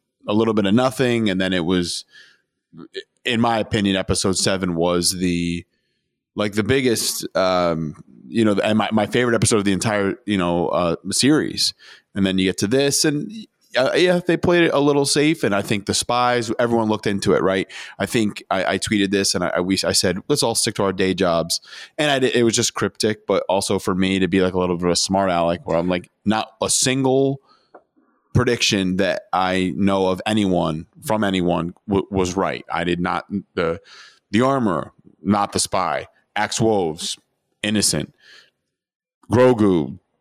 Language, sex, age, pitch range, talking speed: English, male, 20-39, 90-115 Hz, 190 wpm